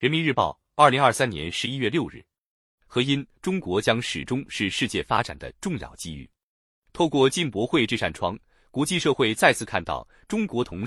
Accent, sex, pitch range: native, male, 110-160 Hz